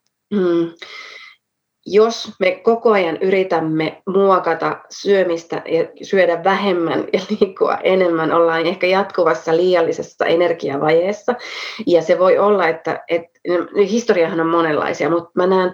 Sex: female